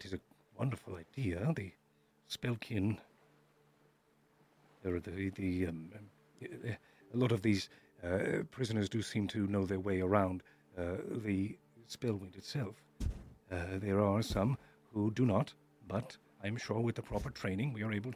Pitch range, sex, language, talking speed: 95-135 Hz, male, English, 145 wpm